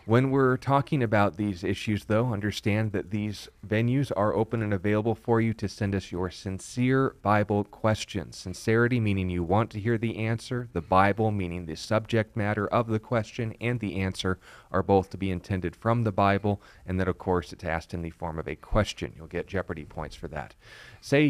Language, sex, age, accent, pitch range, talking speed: English, male, 30-49, American, 90-110 Hz, 200 wpm